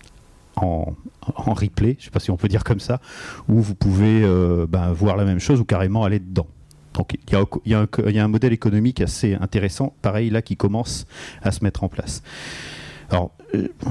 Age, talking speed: 40-59, 205 wpm